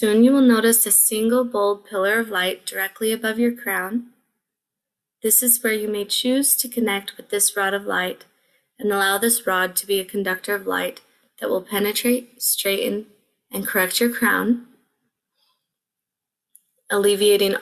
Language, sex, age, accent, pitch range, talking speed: English, female, 20-39, American, 195-235 Hz, 155 wpm